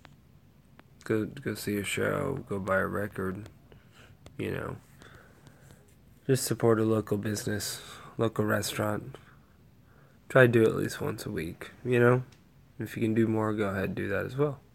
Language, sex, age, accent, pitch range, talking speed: English, male, 20-39, American, 105-130 Hz, 165 wpm